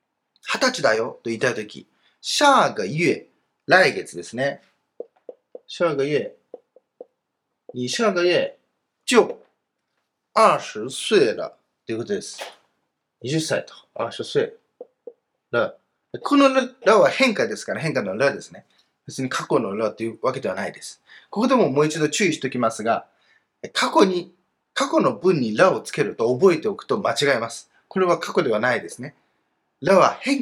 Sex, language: male, Japanese